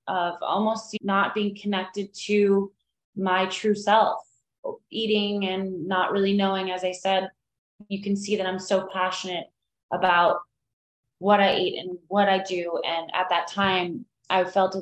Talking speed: 155 wpm